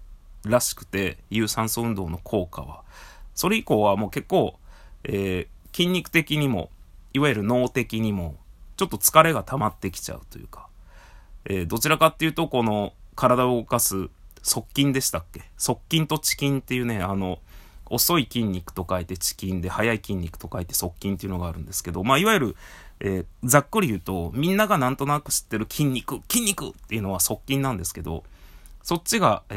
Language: Japanese